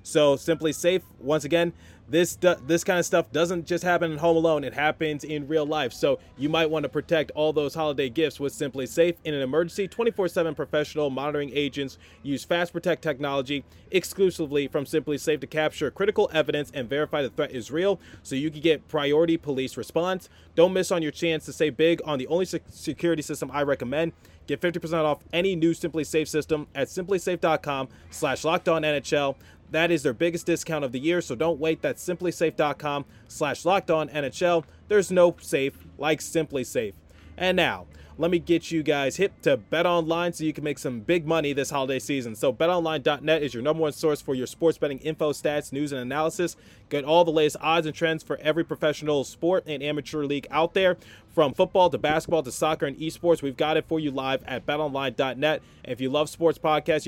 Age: 20-39